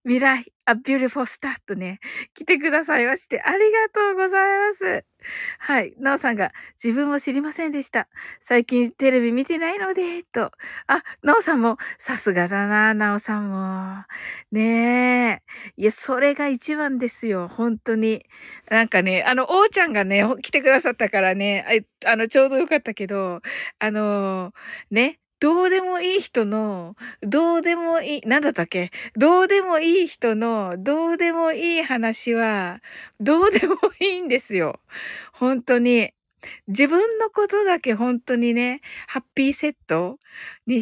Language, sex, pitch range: Japanese, female, 215-315 Hz